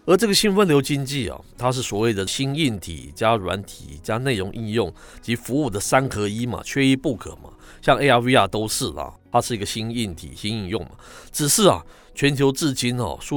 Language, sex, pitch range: Chinese, male, 105-145 Hz